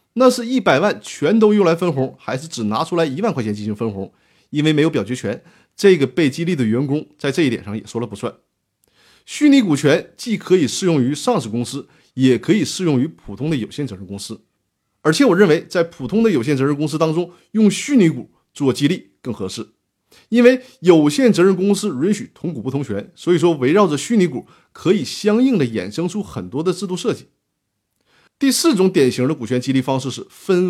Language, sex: Chinese, male